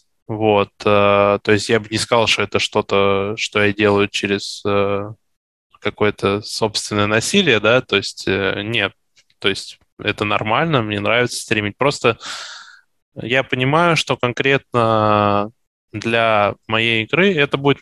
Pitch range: 105-120 Hz